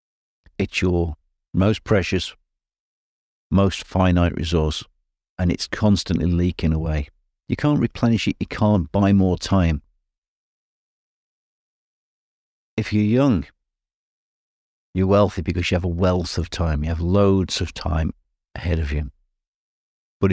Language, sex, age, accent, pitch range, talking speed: English, male, 50-69, British, 85-100 Hz, 125 wpm